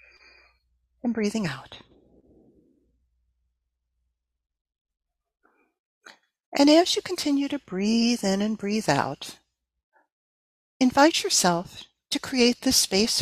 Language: English